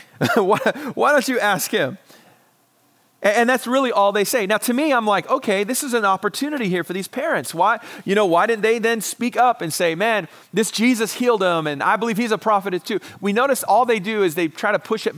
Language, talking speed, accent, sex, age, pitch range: English, 235 wpm, American, male, 30-49, 155-215 Hz